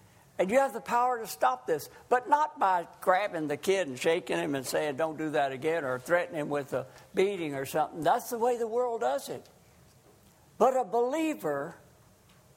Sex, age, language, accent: male, 60-79, English, American